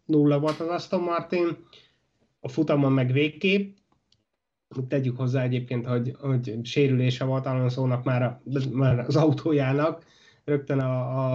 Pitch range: 135-170 Hz